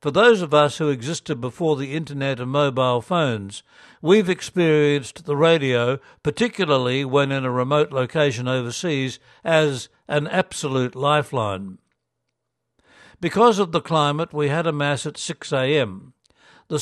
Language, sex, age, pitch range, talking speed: English, male, 60-79, 135-160 Hz, 140 wpm